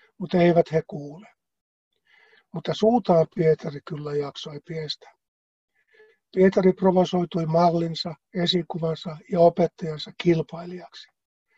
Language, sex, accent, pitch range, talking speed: Finnish, male, native, 155-180 Hz, 90 wpm